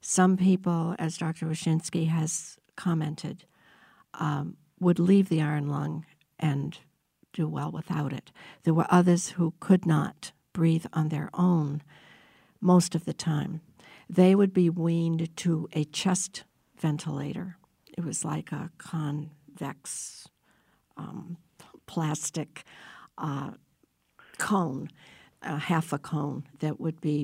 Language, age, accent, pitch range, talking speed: English, 60-79, American, 150-180 Hz, 125 wpm